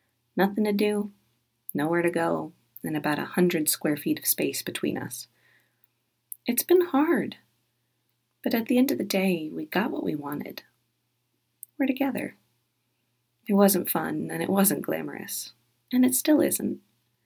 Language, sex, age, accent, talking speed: English, female, 30-49, American, 155 wpm